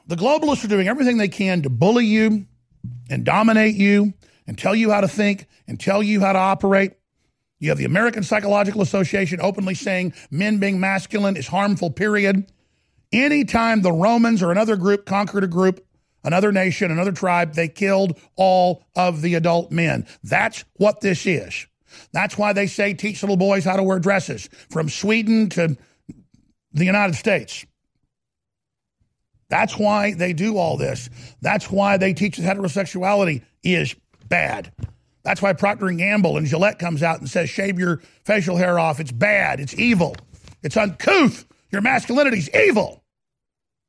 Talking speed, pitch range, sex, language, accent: 165 wpm, 175-210 Hz, male, English, American